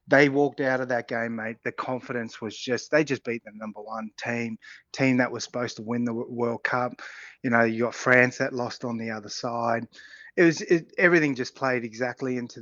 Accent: Australian